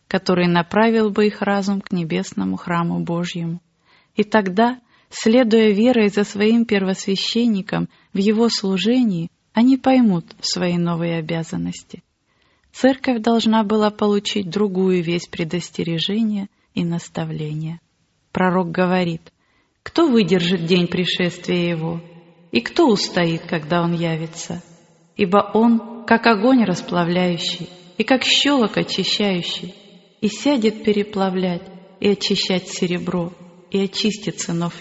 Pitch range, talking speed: 175-215 Hz, 110 wpm